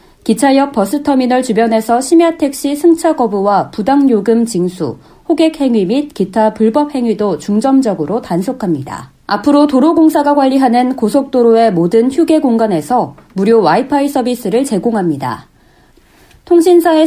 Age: 40-59